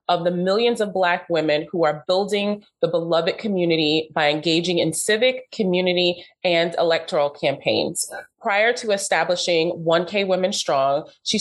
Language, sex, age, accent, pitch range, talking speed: English, female, 30-49, American, 160-200 Hz, 140 wpm